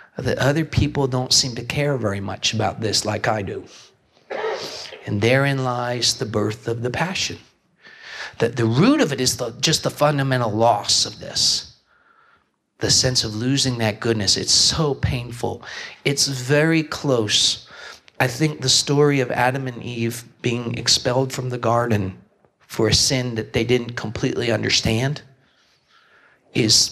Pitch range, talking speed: 120-155 Hz, 150 wpm